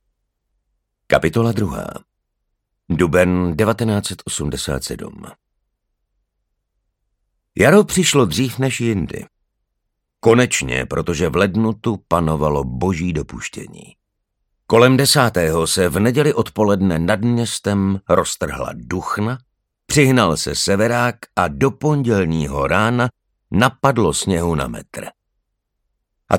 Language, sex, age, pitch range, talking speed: Slovak, male, 60-79, 85-115 Hz, 85 wpm